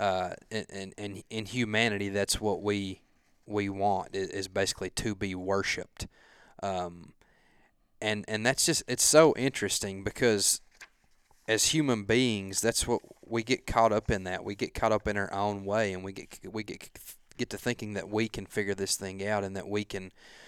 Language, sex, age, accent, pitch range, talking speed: English, male, 30-49, American, 100-115 Hz, 185 wpm